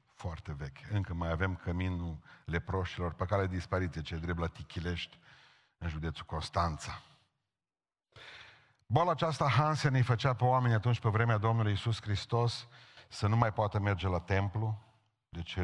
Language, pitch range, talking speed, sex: Romanian, 100-135 Hz, 145 wpm, male